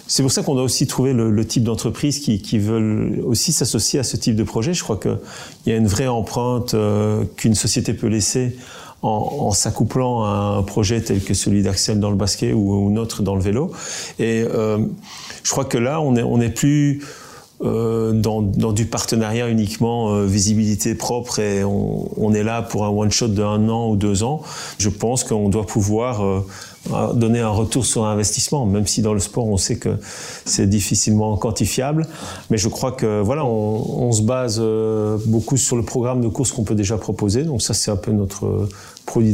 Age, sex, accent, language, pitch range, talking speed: 40-59, male, French, French, 105-120 Hz, 205 wpm